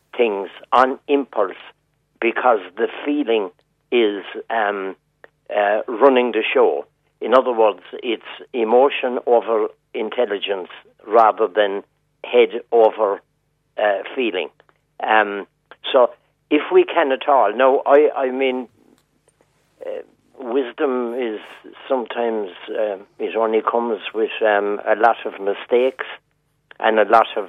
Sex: male